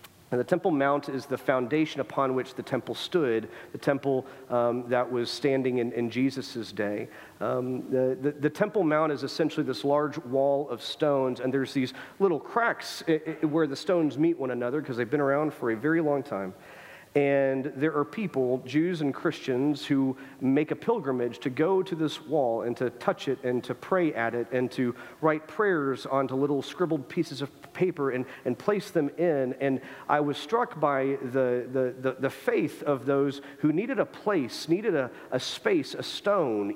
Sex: male